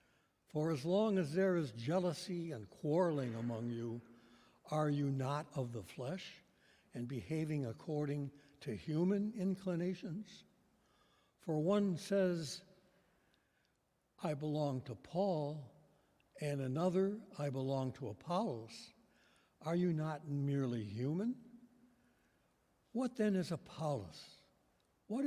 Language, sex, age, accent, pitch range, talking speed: English, male, 60-79, American, 130-180 Hz, 110 wpm